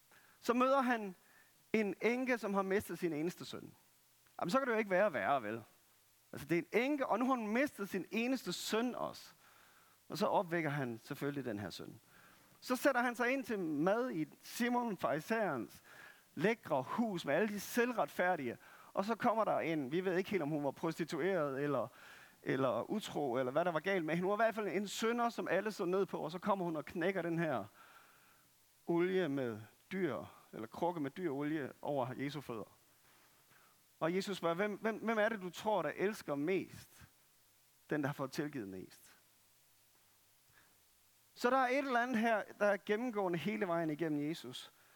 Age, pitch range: 40-59, 155-220 Hz